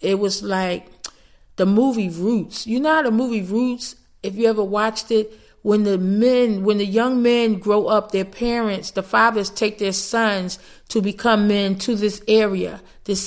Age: 40-59